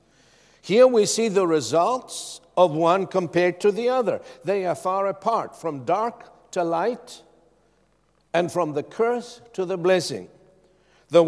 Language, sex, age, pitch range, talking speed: English, male, 60-79, 125-170 Hz, 145 wpm